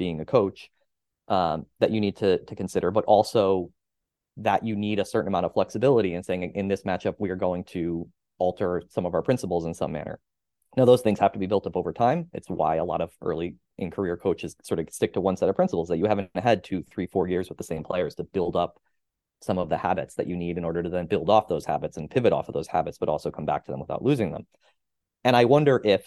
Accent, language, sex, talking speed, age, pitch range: American, English, male, 260 wpm, 20-39, 90-110 Hz